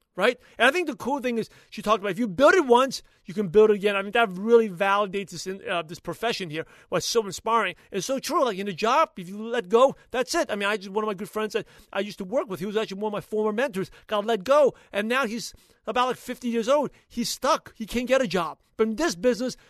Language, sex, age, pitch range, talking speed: English, male, 40-59, 195-245 Hz, 285 wpm